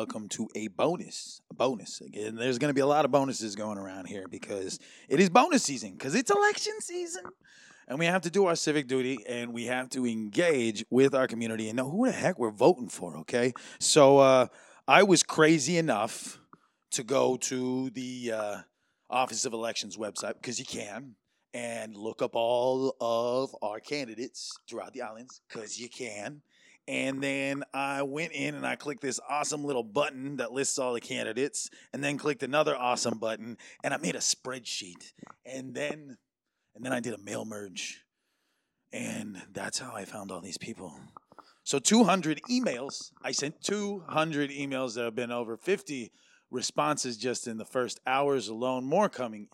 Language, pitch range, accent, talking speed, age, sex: English, 120-145 Hz, American, 180 wpm, 30-49, male